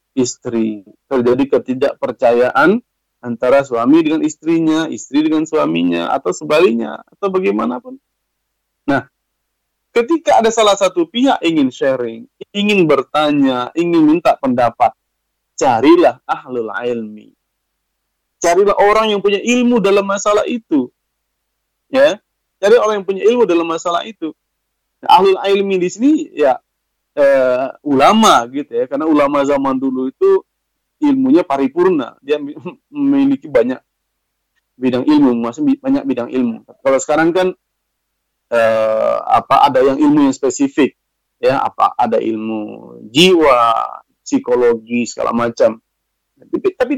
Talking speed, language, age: 120 wpm, English, 30-49